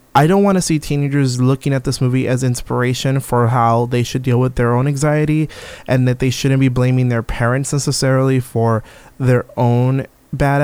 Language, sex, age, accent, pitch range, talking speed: English, male, 20-39, American, 120-140 Hz, 190 wpm